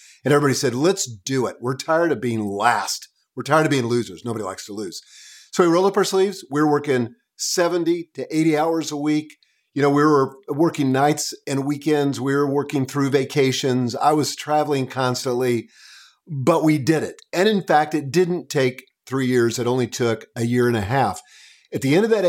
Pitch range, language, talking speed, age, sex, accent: 125-155 Hz, English, 205 wpm, 50-69, male, American